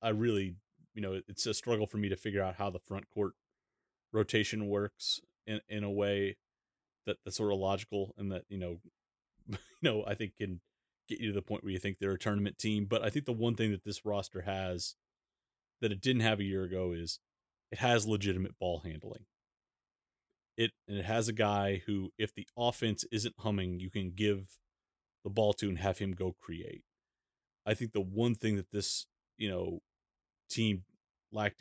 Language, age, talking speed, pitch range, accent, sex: English, 30-49, 200 wpm, 95-110 Hz, American, male